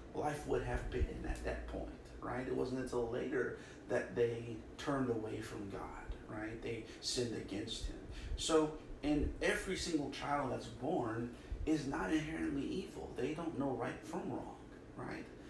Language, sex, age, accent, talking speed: English, male, 30-49, American, 160 wpm